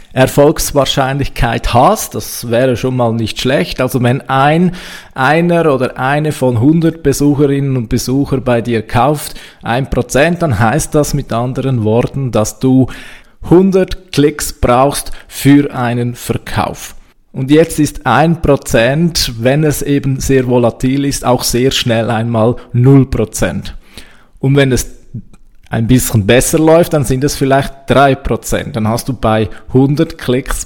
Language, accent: German, Austrian